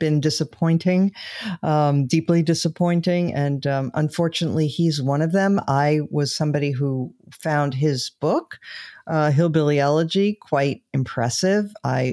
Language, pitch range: English, 140-175 Hz